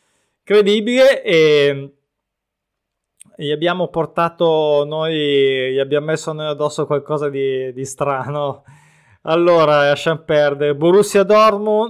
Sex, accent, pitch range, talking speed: male, native, 150-190 Hz, 100 wpm